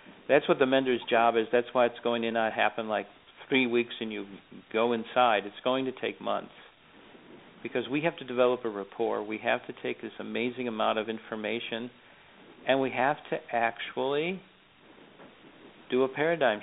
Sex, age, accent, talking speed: male, 50-69, American, 175 wpm